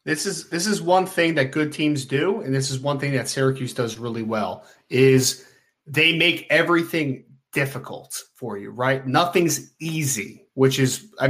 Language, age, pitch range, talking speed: English, 20-39, 135-180 Hz, 175 wpm